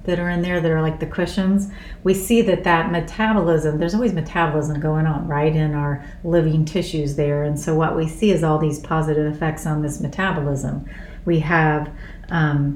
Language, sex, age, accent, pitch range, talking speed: English, female, 40-59, American, 155-180 Hz, 195 wpm